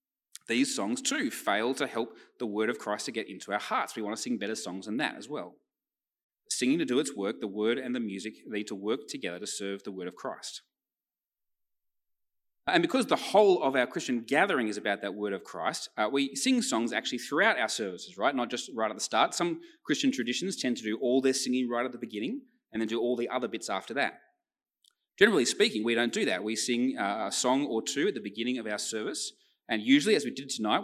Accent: Australian